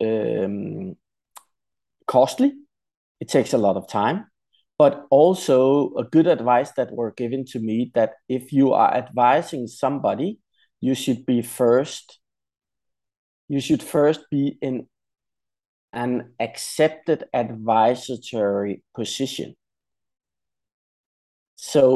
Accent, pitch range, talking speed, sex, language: Danish, 120-140 Hz, 105 wpm, male, English